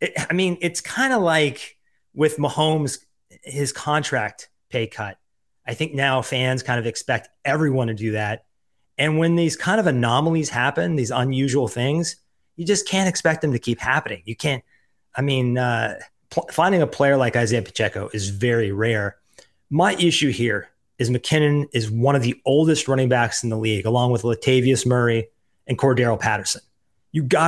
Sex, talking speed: male, 170 wpm